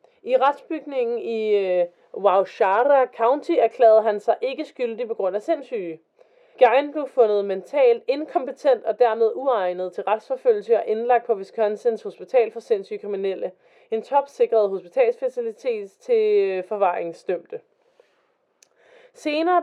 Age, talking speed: 30-49, 125 wpm